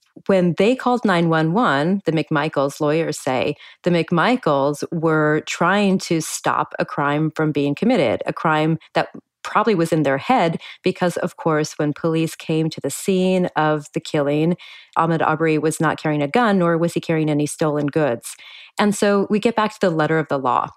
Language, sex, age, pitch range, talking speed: English, female, 30-49, 150-180 Hz, 185 wpm